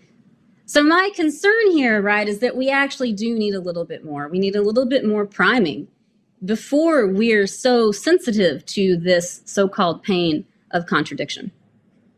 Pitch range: 175-230 Hz